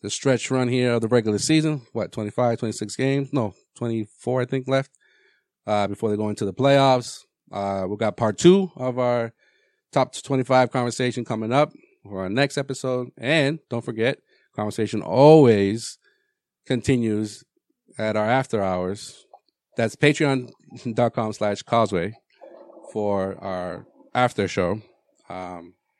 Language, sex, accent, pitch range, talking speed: English, male, American, 100-125 Hz, 135 wpm